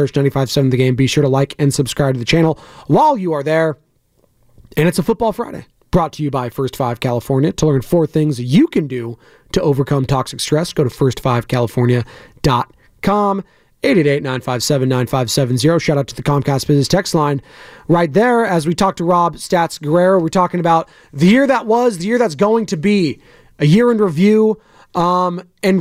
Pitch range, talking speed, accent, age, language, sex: 145-195 Hz, 185 wpm, American, 30-49, English, male